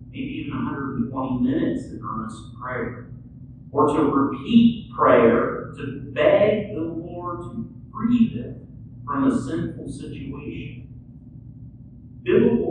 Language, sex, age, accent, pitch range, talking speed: English, male, 50-69, American, 125-200 Hz, 105 wpm